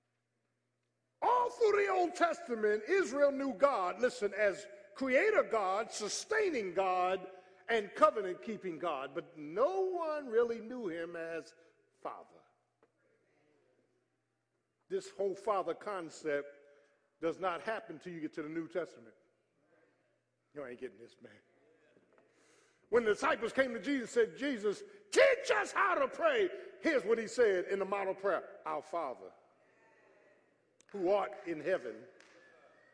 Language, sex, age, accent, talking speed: English, male, 50-69, American, 130 wpm